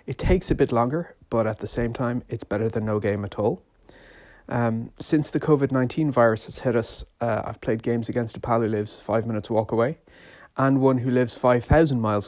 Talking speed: 225 wpm